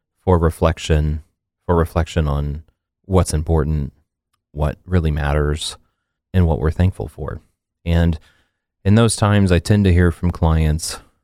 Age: 30-49